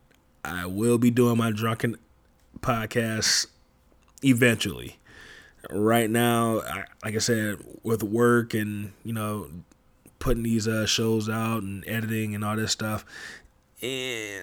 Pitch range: 105-120 Hz